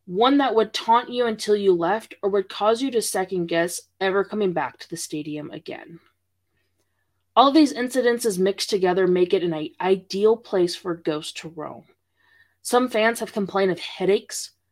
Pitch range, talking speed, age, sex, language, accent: 160-210 Hz, 170 wpm, 20-39, female, English, American